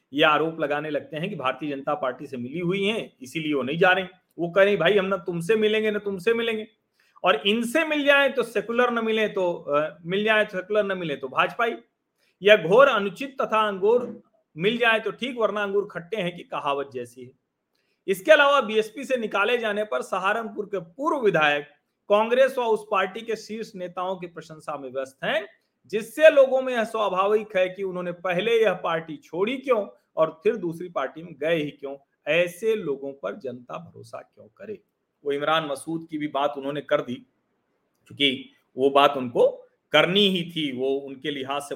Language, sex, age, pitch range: Hindi, male, 40-59, 140-215 Hz